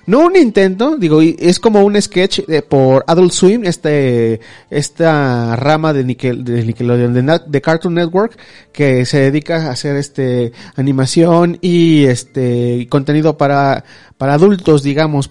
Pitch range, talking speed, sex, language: 135-180 Hz, 135 wpm, male, Spanish